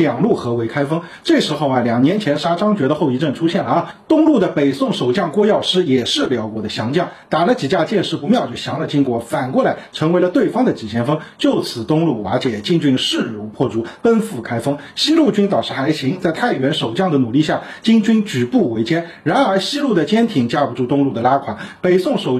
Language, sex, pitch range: Chinese, male, 130-215 Hz